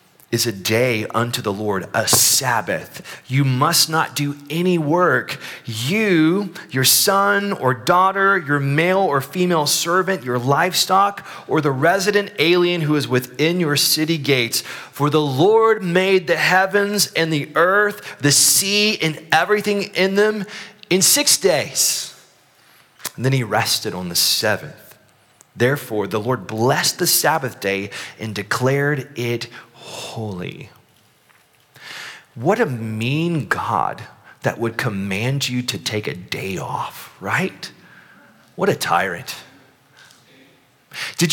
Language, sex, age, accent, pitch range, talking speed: English, male, 30-49, American, 115-180 Hz, 130 wpm